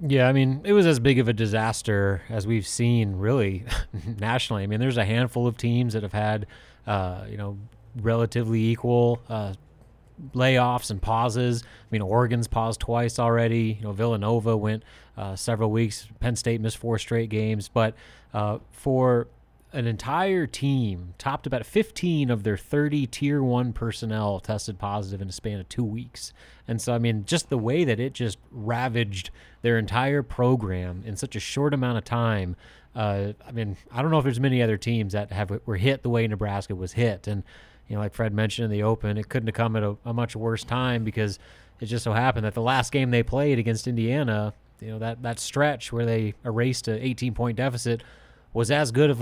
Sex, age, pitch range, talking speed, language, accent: male, 30-49, 110-125 Hz, 200 wpm, English, American